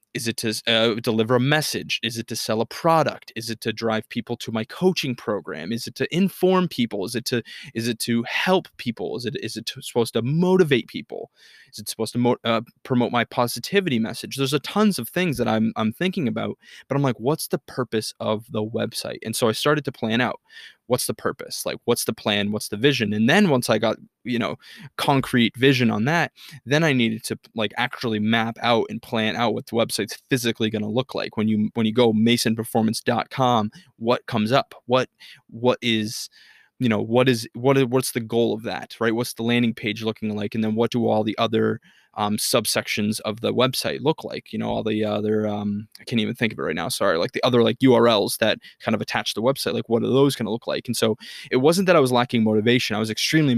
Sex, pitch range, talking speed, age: male, 110-130 Hz, 235 wpm, 20-39